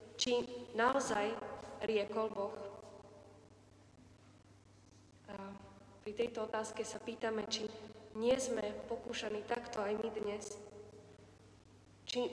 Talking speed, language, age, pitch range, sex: 90 wpm, Slovak, 20-39, 200-240 Hz, female